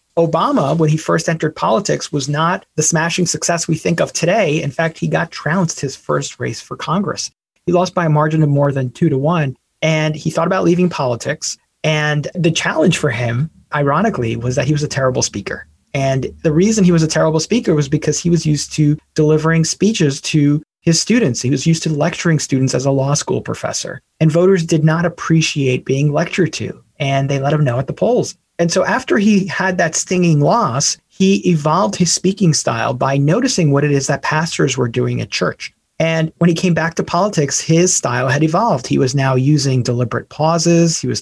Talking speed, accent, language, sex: 210 wpm, American, English, male